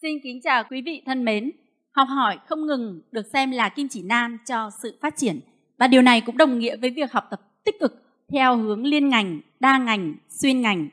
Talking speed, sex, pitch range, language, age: 225 wpm, female, 215-275 Hz, Vietnamese, 20-39